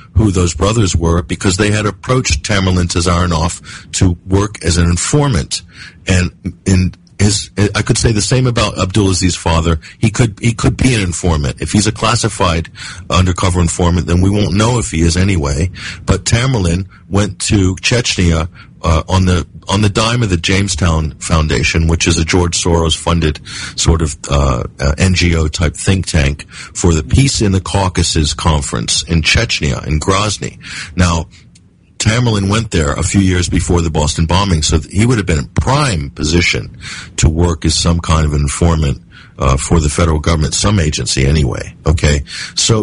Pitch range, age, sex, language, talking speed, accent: 80-100 Hz, 50-69, male, English, 175 wpm, American